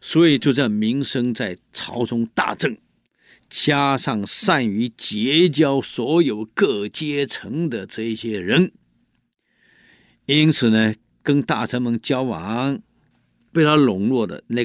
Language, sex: Chinese, male